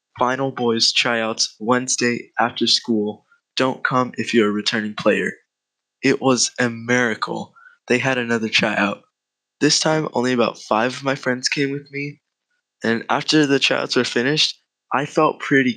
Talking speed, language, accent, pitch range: 155 wpm, English, American, 115-135 Hz